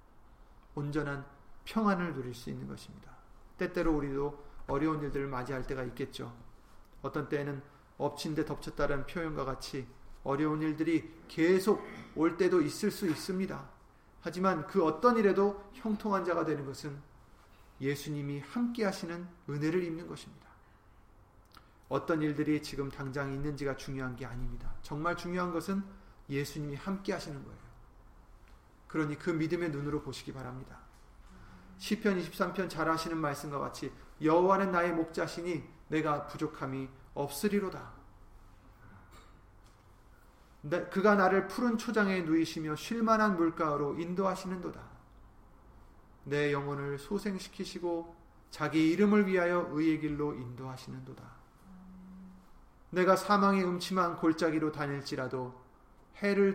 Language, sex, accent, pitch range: Korean, male, native, 135-180 Hz